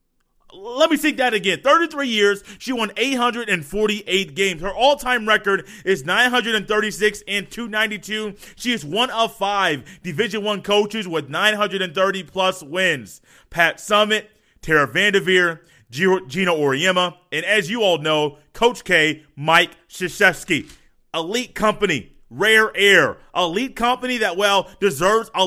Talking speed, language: 125 wpm, English